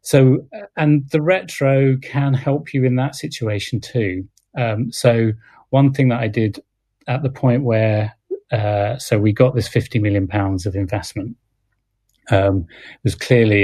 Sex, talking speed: male, 160 wpm